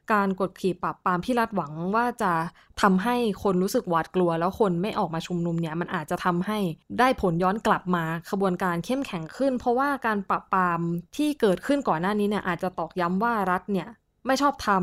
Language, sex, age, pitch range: Thai, female, 20-39, 175-220 Hz